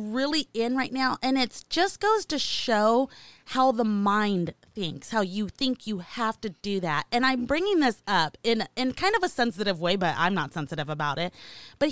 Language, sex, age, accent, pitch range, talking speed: English, female, 30-49, American, 190-260 Hz, 205 wpm